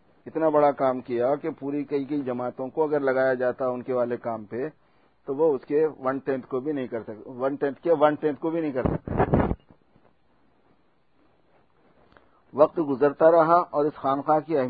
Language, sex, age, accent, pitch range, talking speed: English, male, 50-69, Indian, 125-145 Hz, 145 wpm